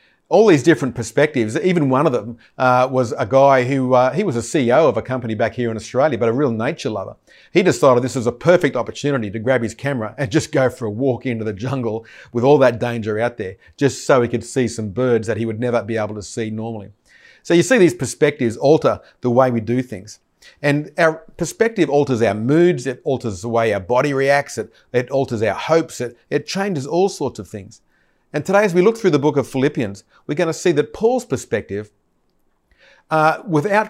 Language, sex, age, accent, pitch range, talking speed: English, male, 40-59, Australian, 115-145 Hz, 225 wpm